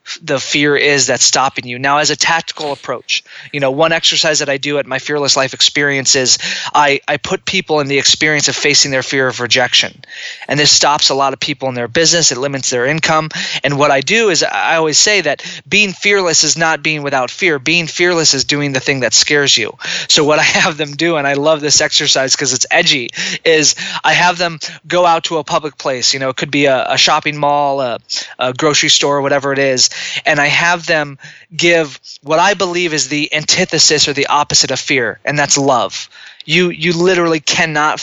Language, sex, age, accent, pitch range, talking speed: English, male, 20-39, American, 140-165 Hz, 220 wpm